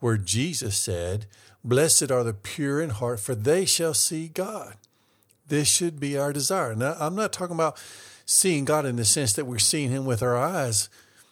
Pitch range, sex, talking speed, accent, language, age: 110-150 Hz, male, 190 wpm, American, English, 50-69